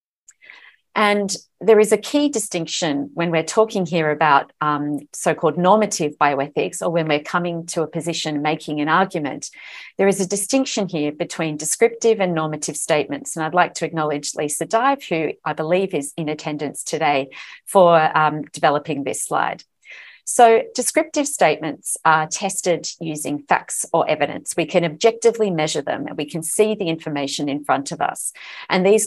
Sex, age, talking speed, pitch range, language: female, 40-59, 165 wpm, 150-190 Hz, English